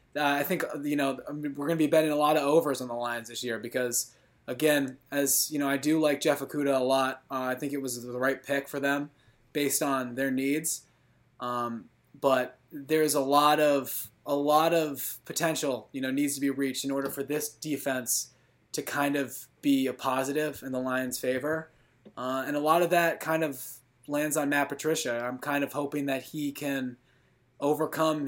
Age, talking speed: 20-39, 205 wpm